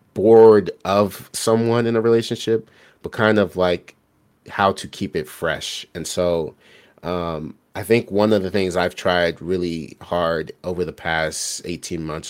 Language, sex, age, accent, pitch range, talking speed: English, male, 30-49, American, 85-100 Hz, 160 wpm